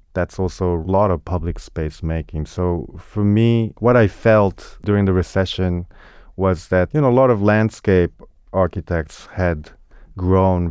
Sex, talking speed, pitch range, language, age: male, 155 wpm, 85-95 Hz, English, 30-49